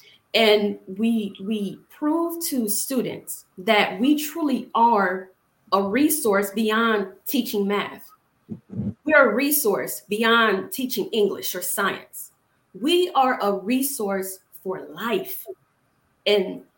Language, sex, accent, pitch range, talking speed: English, female, American, 195-255 Hz, 105 wpm